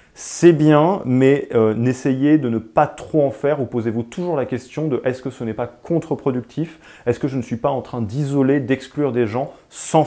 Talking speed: 220 wpm